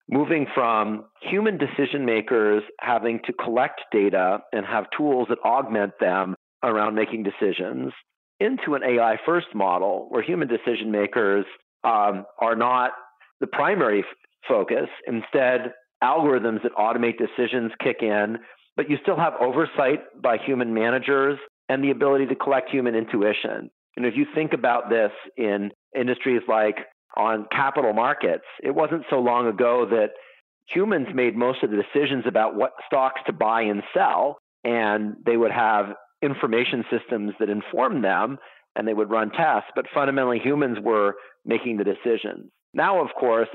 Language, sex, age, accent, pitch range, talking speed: English, male, 40-59, American, 105-130 Hz, 150 wpm